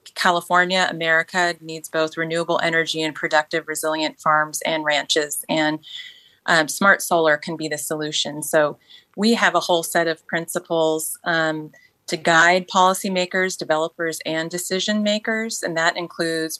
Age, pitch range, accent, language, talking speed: 30-49, 155-180 Hz, American, English, 140 wpm